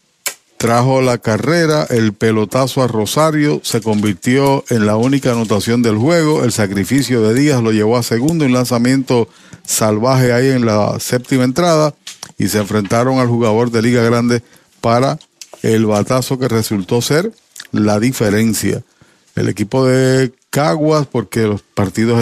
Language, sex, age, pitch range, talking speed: Spanish, male, 40-59, 115-140 Hz, 145 wpm